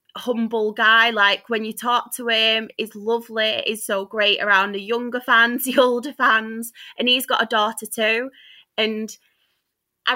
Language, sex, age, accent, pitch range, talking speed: English, female, 20-39, British, 210-245 Hz, 165 wpm